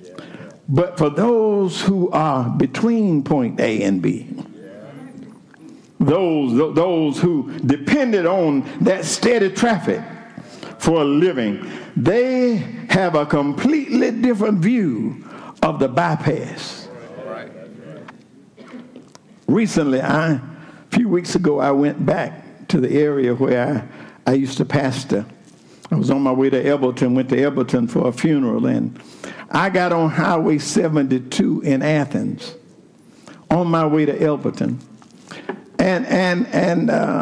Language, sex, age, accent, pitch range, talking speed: English, male, 60-79, American, 145-225 Hz, 125 wpm